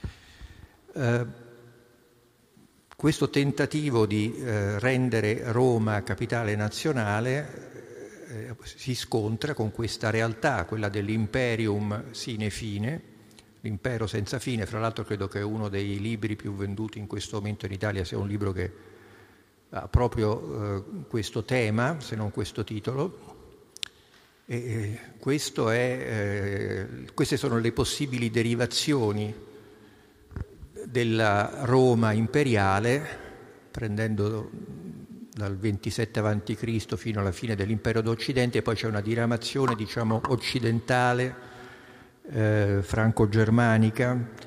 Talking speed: 110 wpm